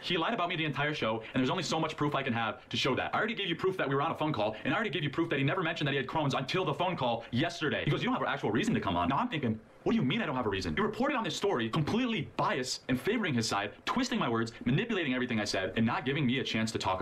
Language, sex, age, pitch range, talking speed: English, male, 30-49, 115-145 Hz, 350 wpm